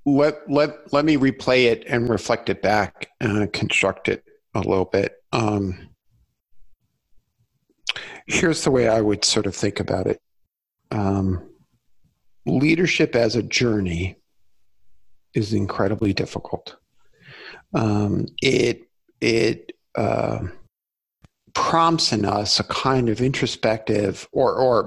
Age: 50-69